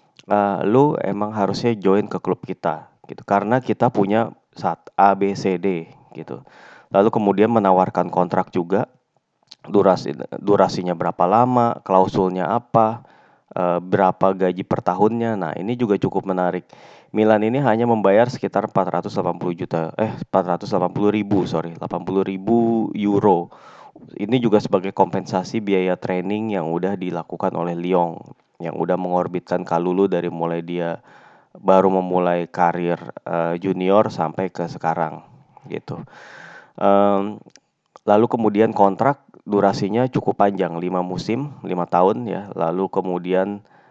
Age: 20-39